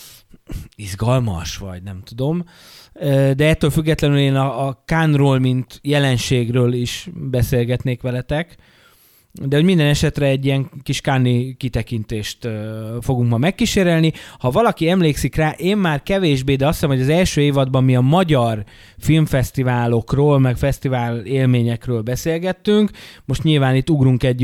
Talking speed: 135 wpm